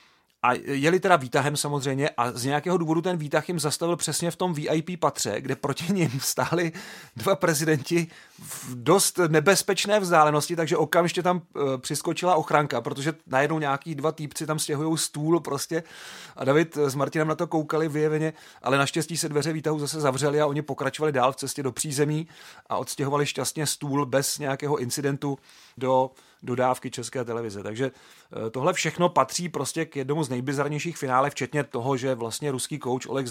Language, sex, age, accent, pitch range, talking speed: Czech, male, 40-59, native, 125-150 Hz, 170 wpm